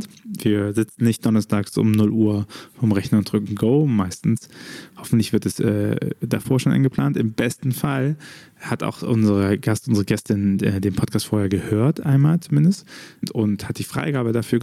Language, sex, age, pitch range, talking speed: German, male, 20-39, 105-140 Hz, 170 wpm